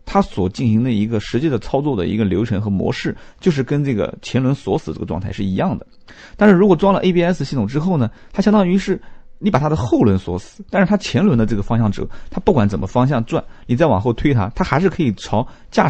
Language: Chinese